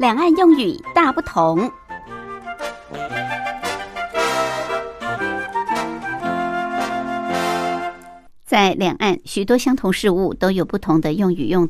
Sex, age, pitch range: male, 60-79, 155-215 Hz